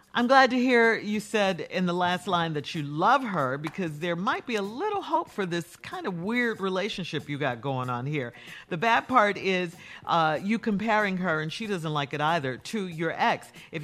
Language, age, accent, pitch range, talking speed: English, 50-69, American, 150-210 Hz, 215 wpm